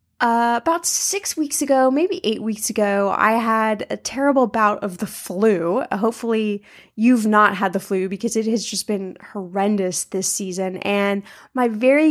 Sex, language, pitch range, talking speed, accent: female, English, 200-255 Hz, 170 wpm, American